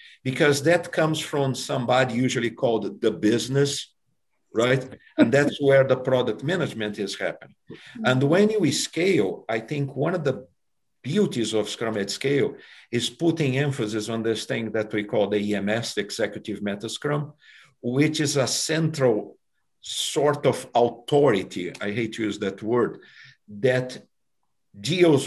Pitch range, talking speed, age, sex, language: 110-140 Hz, 145 wpm, 50-69, male, English